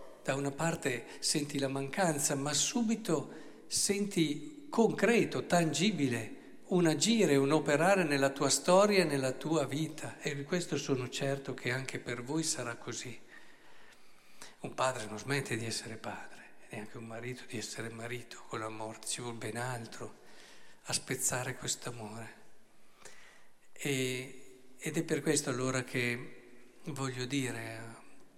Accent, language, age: native, Italian, 50-69